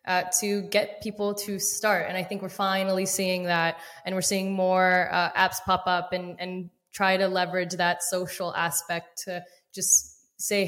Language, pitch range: English, 180-205 Hz